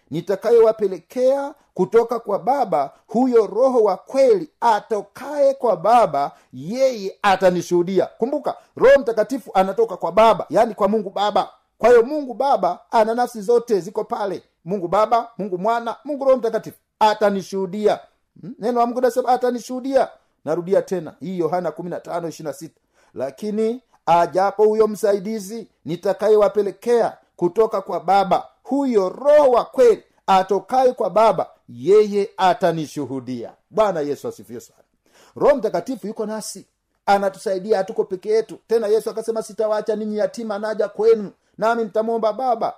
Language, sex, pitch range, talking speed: Swahili, male, 190-235 Hz, 125 wpm